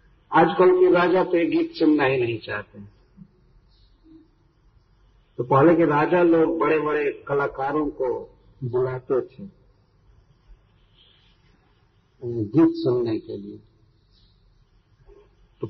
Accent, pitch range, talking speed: native, 125-195 Hz, 95 wpm